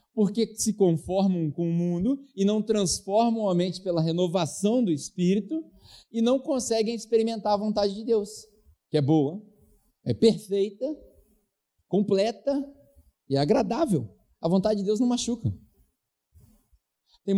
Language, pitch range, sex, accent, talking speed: Portuguese, 150-210 Hz, male, Brazilian, 130 wpm